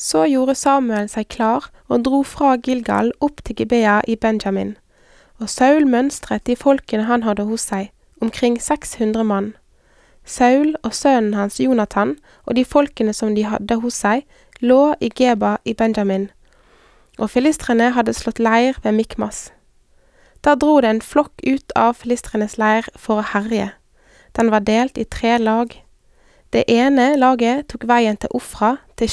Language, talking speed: Danish, 155 wpm